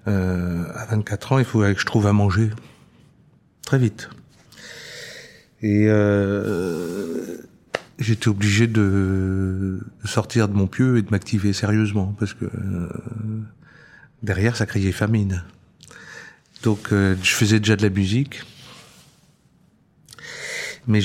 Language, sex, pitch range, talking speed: French, male, 100-120 Hz, 120 wpm